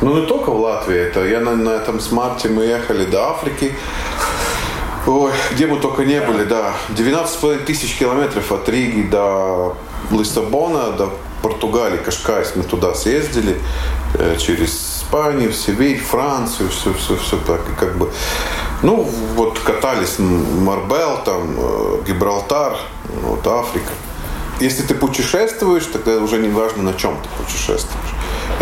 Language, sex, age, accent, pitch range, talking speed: Russian, male, 20-39, native, 90-115 Hz, 130 wpm